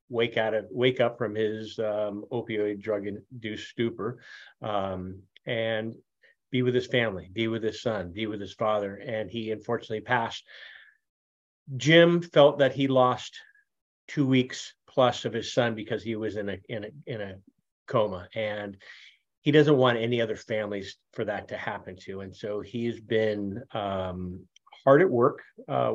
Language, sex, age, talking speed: English, male, 40-59, 165 wpm